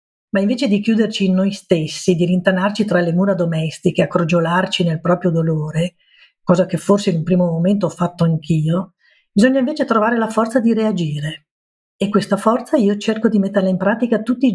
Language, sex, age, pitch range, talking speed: Italian, female, 50-69, 180-215 Hz, 190 wpm